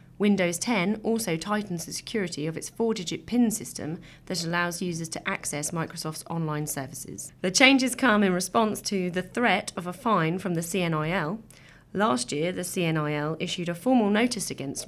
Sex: female